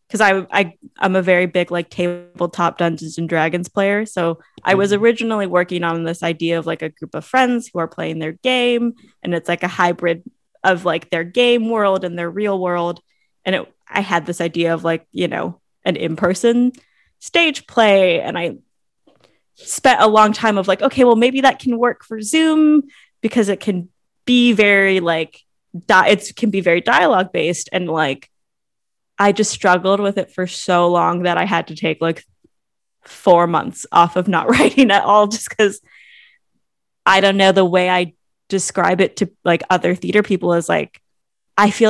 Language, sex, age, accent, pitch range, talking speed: English, female, 20-39, American, 170-210 Hz, 190 wpm